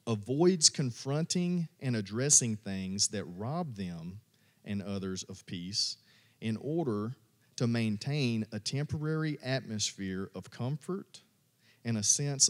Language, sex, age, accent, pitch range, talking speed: English, male, 40-59, American, 110-145 Hz, 115 wpm